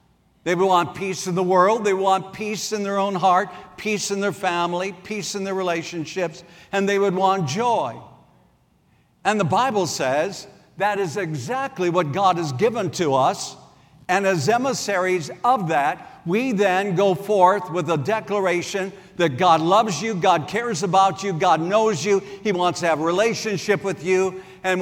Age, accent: 60-79, American